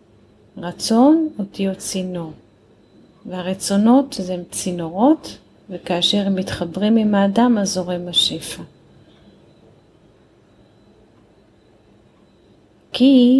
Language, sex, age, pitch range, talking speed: Hebrew, female, 30-49, 170-200 Hz, 70 wpm